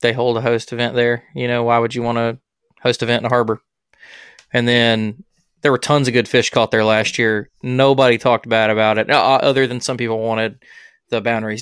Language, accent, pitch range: English, American, 110-135 Hz